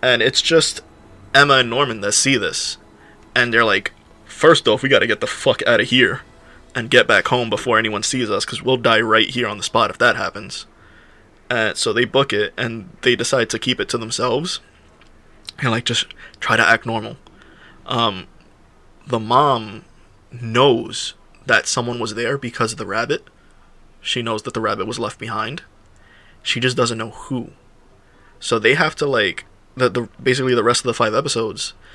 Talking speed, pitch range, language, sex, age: 185 wpm, 110-125 Hz, English, male, 20-39